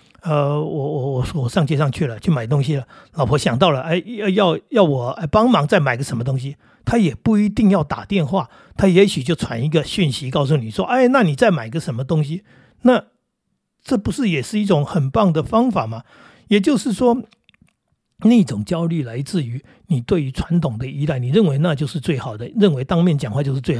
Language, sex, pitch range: Chinese, male, 140-185 Hz